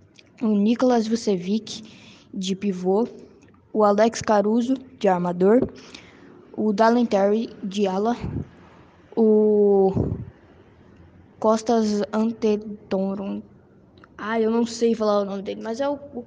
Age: 10-29